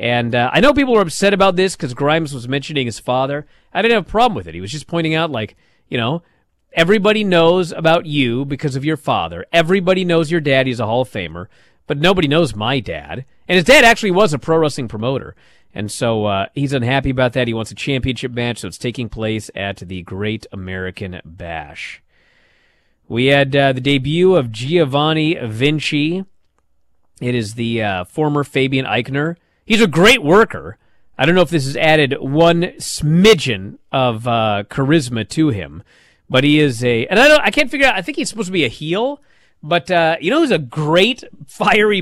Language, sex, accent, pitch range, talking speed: English, male, American, 120-175 Hz, 205 wpm